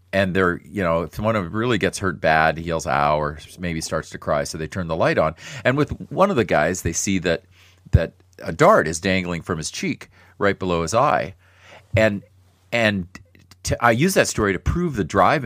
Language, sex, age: English, male, 40-59